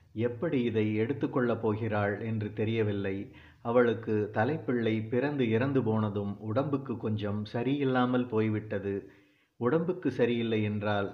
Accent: native